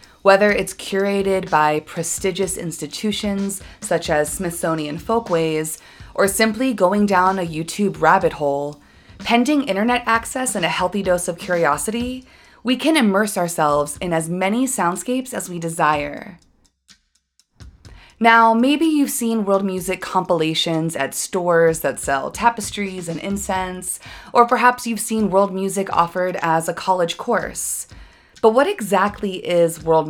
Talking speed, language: 135 wpm, English